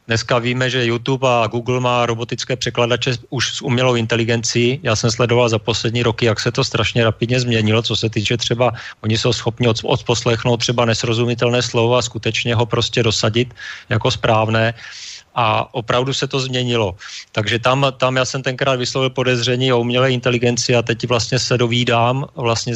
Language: Slovak